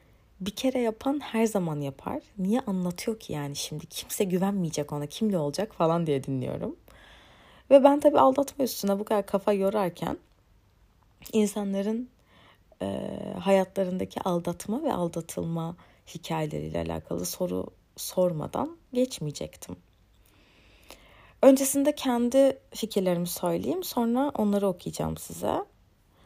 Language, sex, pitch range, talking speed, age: Turkish, female, 155-250 Hz, 105 wpm, 30-49